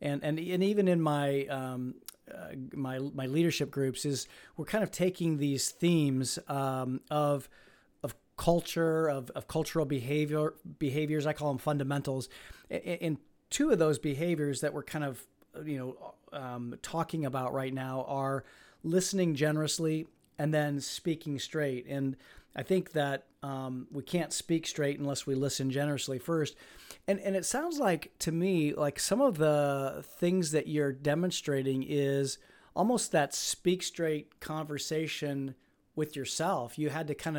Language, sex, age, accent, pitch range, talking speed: English, male, 40-59, American, 140-165 Hz, 150 wpm